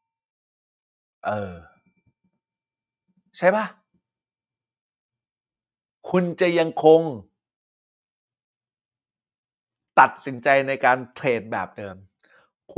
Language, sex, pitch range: Thai, male, 115-170 Hz